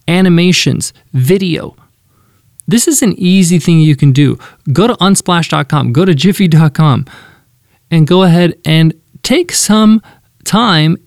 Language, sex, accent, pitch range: English, male, American, 140-175 Hz